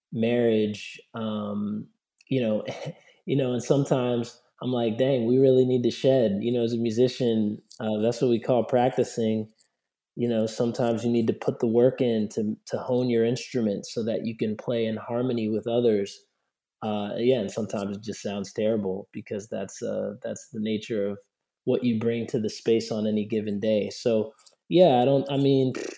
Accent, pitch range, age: American, 110-125 Hz, 20-39